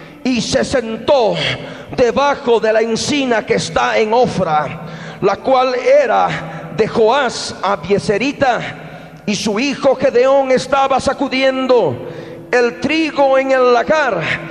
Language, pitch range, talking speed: Spanish, 185-265 Hz, 120 wpm